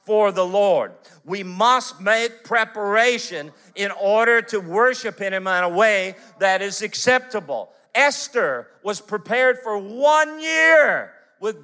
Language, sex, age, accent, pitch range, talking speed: English, male, 50-69, American, 190-250 Hz, 130 wpm